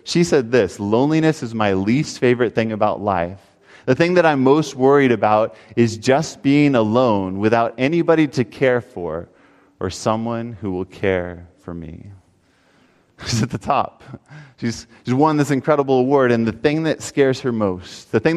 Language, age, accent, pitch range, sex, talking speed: English, 30-49, American, 110-190 Hz, male, 175 wpm